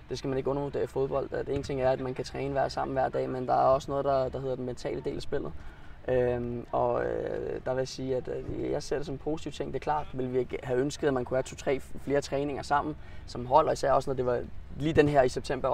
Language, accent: Danish, native